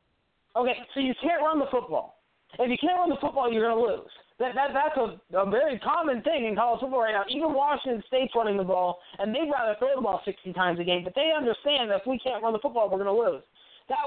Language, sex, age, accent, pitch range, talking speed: English, male, 20-39, American, 195-270 Hz, 260 wpm